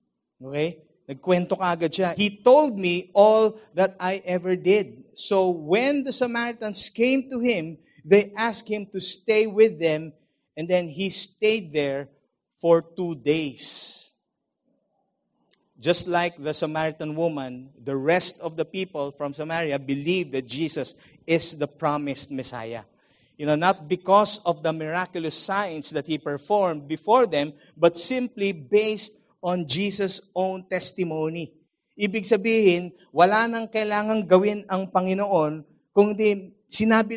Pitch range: 160-210 Hz